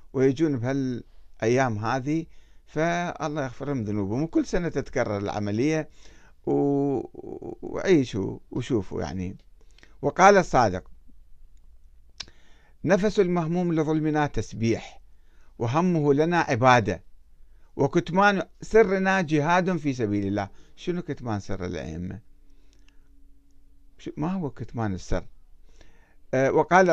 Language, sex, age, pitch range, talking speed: Arabic, male, 60-79, 100-160 Hz, 80 wpm